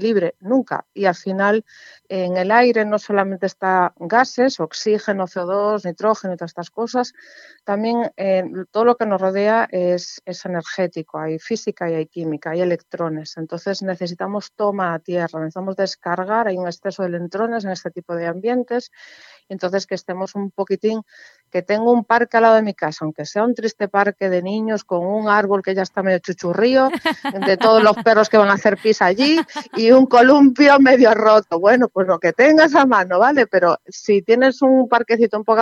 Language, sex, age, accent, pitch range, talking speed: Spanish, female, 40-59, Spanish, 180-220 Hz, 190 wpm